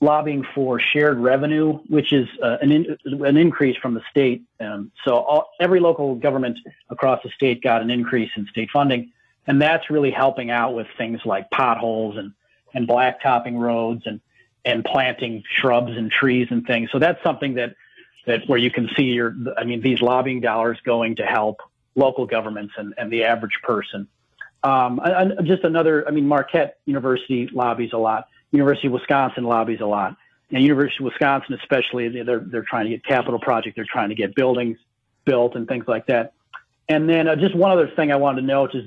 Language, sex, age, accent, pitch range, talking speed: English, male, 40-59, American, 120-140 Hz, 195 wpm